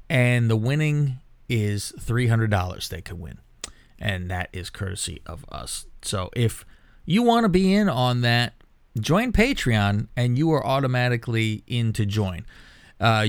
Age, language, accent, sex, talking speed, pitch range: 30-49, English, American, male, 150 wpm, 105-130 Hz